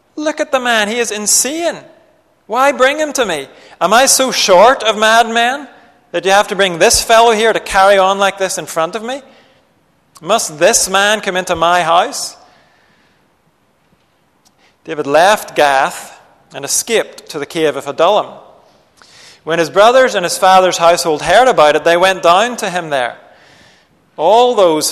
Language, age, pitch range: English, 40-59, 155-210 Hz